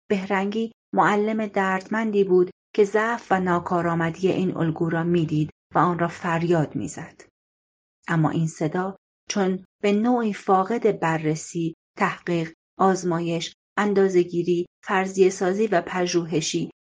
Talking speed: 110 wpm